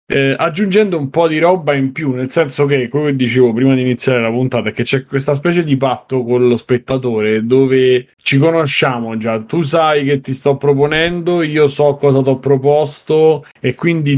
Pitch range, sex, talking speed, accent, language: 115-140 Hz, male, 195 wpm, native, Italian